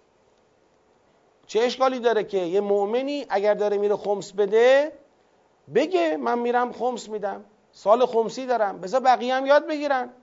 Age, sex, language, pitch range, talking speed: 40-59, male, Persian, 205-265 Hz, 135 wpm